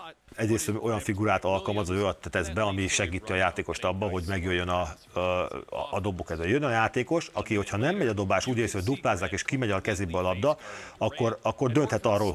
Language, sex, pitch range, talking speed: Hungarian, male, 95-115 Hz, 200 wpm